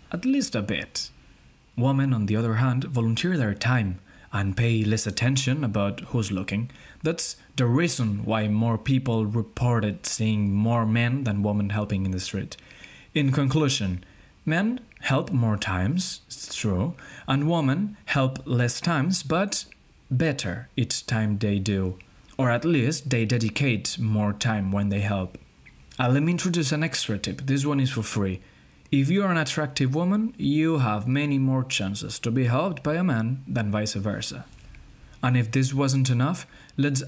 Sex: male